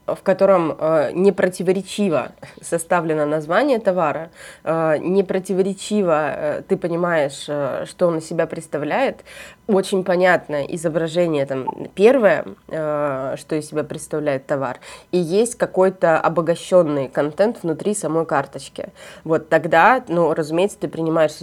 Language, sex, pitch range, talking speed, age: Russian, female, 150-185 Hz, 105 wpm, 20-39